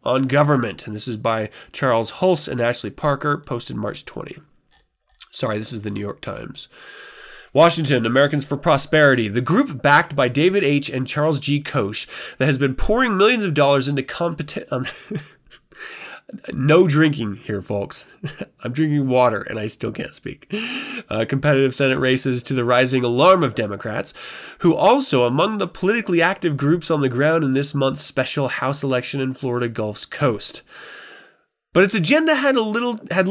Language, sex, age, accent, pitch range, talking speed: English, male, 20-39, American, 125-180 Hz, 165 wpm